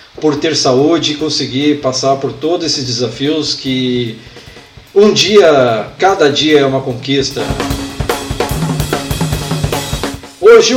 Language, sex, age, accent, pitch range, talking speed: Portuguese, male, 50-69, Brazilian, 130-190 Hz, 105 wpm